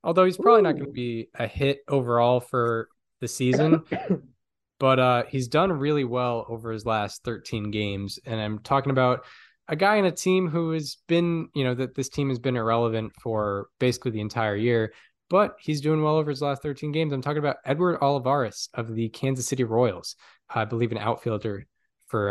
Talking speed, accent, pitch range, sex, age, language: 195 wpm, American, 115-150 Hz, male, 10-29, English